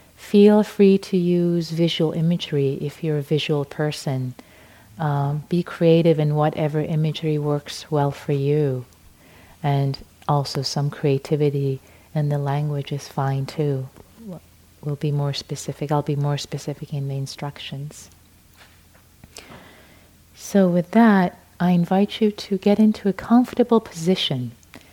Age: 30-49